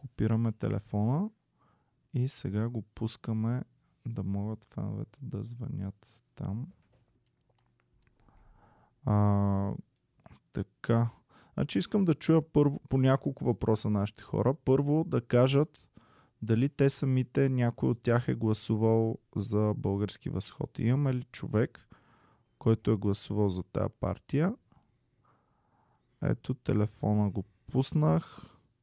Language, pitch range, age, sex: Bulgarian, 105-130 Hz, 20-39, male